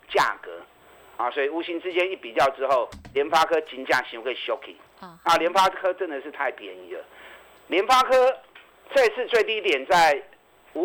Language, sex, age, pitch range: Chinese, male, 50-69, 160-240 Hz